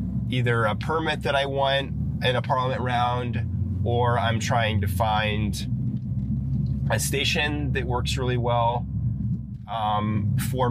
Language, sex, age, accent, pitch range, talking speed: English, male, 20-39, American, 105-125 Hz, 130 wpm